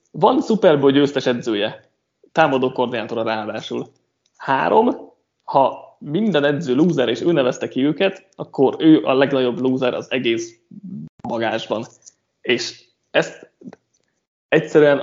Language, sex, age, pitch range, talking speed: Hungarian, male, 20-39, 125-170 Hz, 110 wpm